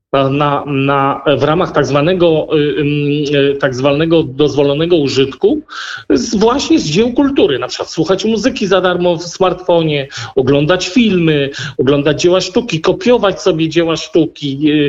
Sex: male